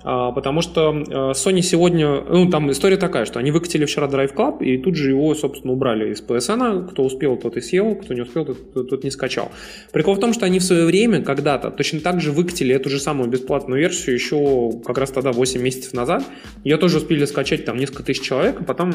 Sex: male